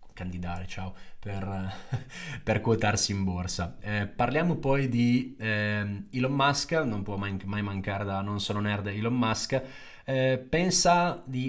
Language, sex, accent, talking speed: Italian, male, native, 140 wpm